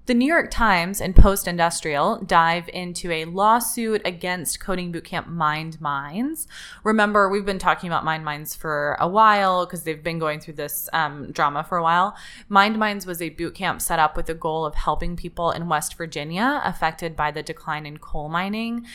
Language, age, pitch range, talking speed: English, 20-39, 155-195 Hz, 190 wpm